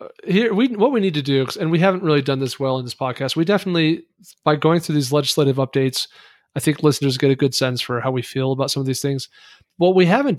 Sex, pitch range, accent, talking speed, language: male, 135-170 Hz, American, 255 wpm, English